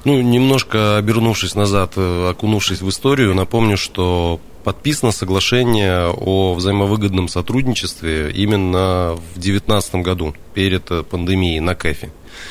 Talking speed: 105 wpm